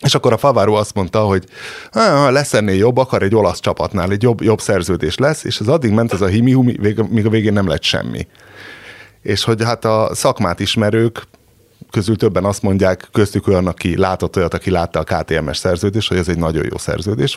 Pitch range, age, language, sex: 90-115 Hz, 30-49, Hungarian, male